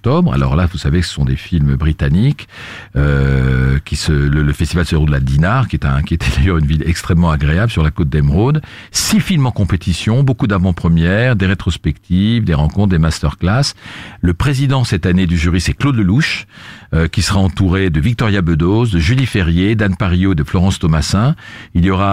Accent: French